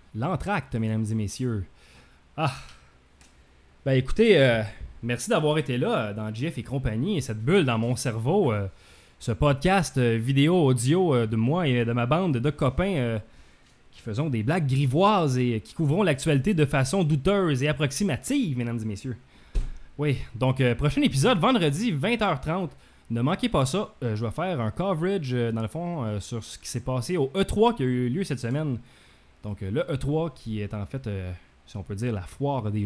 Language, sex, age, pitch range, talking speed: English, male, 20-39, 110-145 Hz, 190 wpm